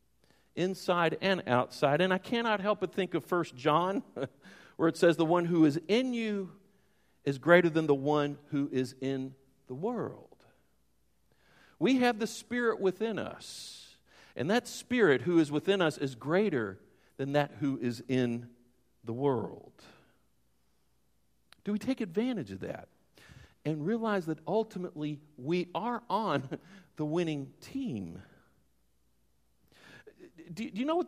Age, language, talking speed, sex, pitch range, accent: 50-69, English, 140 wpm, male, 145-215 Hz, American